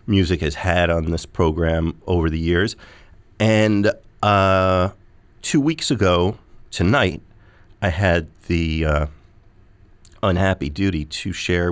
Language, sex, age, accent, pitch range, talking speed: English, male, 40-59, American, 85-100 Hz, 120 wpm